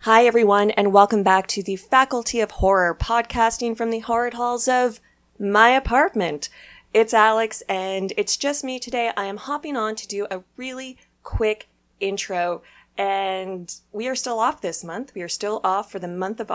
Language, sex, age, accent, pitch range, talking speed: English, female, 30-49, American, 195-235 Hz, 180 wpm